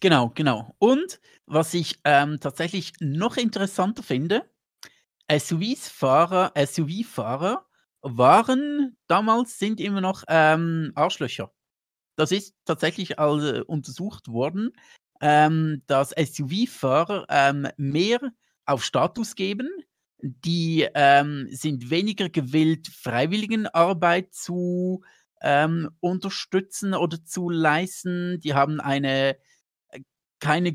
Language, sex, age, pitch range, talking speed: German, male, 50-69, 145-180 Hz, 90 wpm